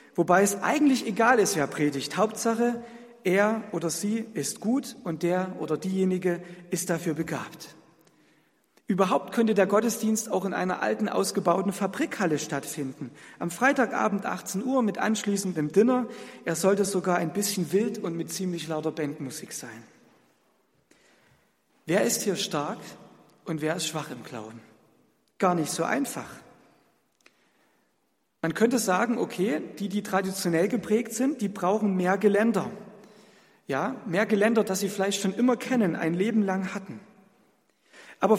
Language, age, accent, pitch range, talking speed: German, 50-69, German, 165-215 Hz, 140 wpm